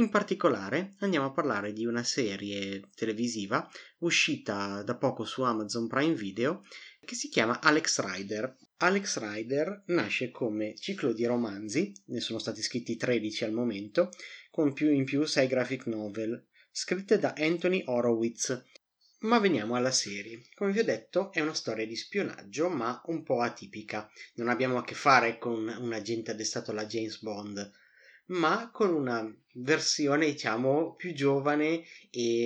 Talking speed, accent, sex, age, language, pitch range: 155 wpm, native, male, 30-49, Italian, 115-160 Hz